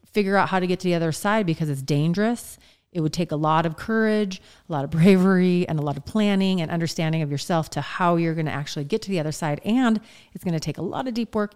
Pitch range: 155-205 Hz